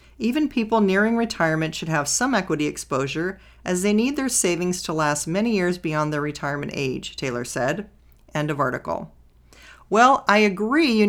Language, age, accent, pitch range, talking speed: English, 40-59, American, 160-215 Hz, 170 wpm